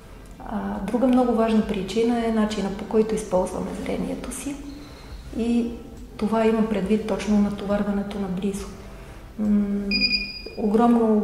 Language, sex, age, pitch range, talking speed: Bulgarian, female, 30-49, 205-225 Hz, 105 wpm